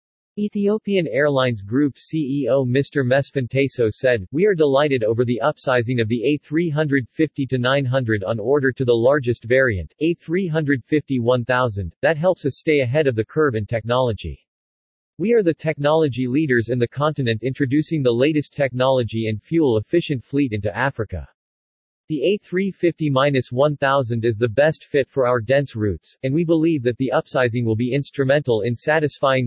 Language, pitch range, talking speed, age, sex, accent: English, 120-150 Hz, 145 wpm, 40-59, male, American